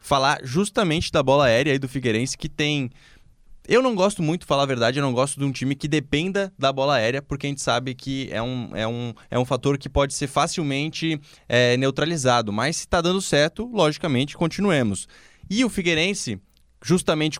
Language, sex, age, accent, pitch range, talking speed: Portuguese, male, 20-39, Brazilian, 120-155 Hz, 185 wpm